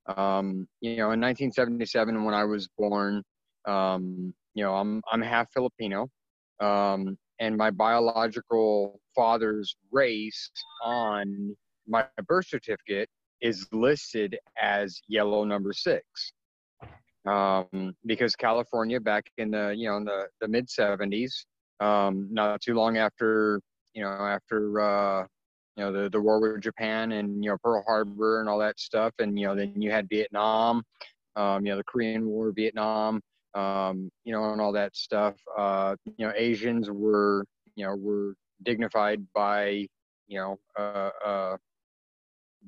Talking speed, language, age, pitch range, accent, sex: 150 wpm, English, 30-49, 100-110 Hz, American, male